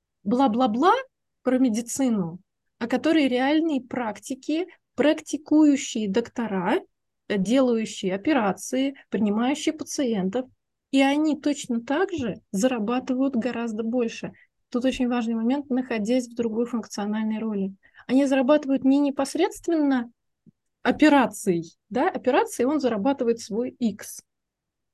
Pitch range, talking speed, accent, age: 230-290 Hz, 100 wpm, native, 20-39